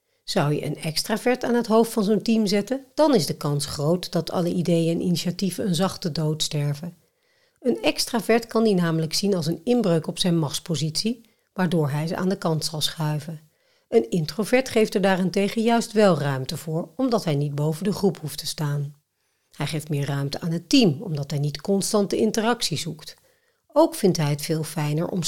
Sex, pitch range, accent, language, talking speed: female, 155-220 Hz, Dutch, Dutch, 195 wpm